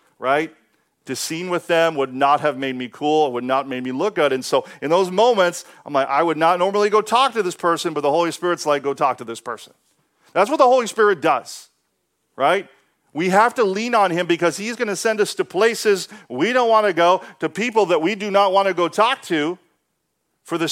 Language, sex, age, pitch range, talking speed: English, male, 40-59, 150-210 Hz, 240 wpm